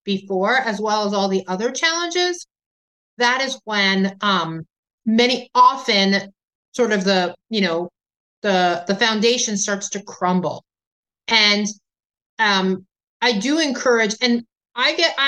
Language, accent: English, American